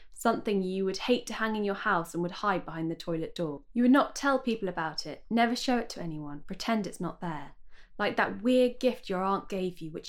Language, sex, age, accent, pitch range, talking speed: English, female, 20-39, British, 175-225 Hz, 245 wpm